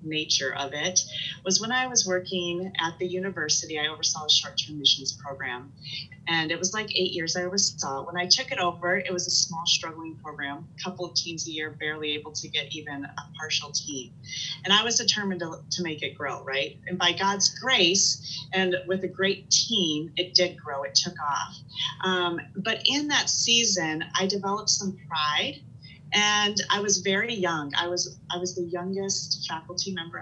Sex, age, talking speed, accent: female, 30-49, 195 wpm, American